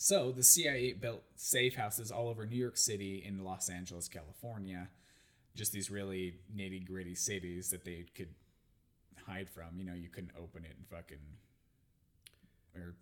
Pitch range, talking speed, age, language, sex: 90-115 Hz, 155 wpm, 20-39, English, male